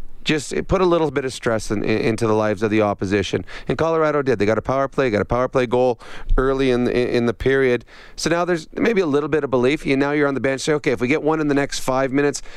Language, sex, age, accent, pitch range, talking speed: English, male, 40-59, American, 120-145 Hz, 295 wpm